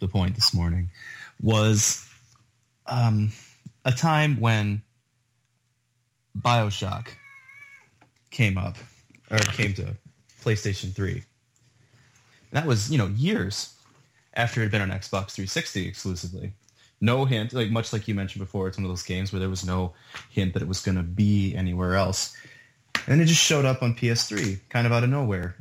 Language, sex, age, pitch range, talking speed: English, male, 20-39, 100-125 Hz, 160 wpm